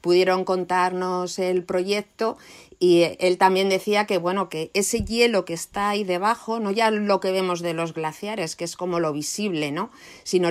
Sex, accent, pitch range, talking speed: female, Spanish, 180-210 Hz, 185 wpm